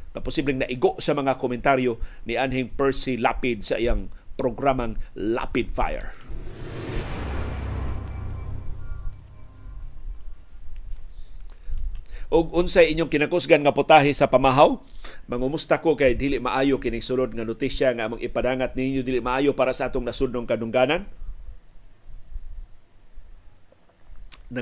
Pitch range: 90-145 Hz